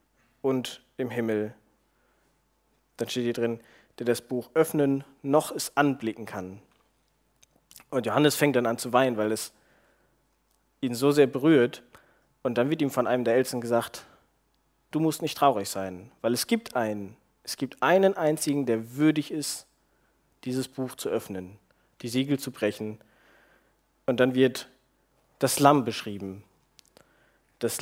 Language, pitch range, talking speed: German, 115-140 Hz, 145 wpm